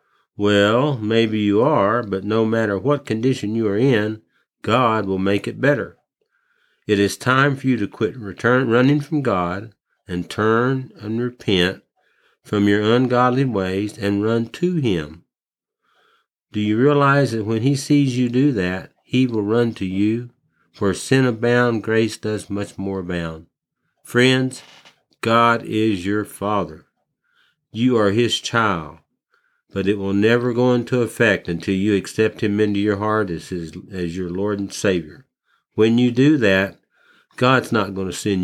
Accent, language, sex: American, English, male